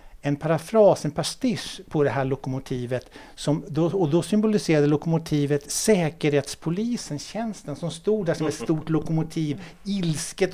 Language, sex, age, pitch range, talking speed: Swedish, male, 60-79, 145-175 Hz, 135 wpm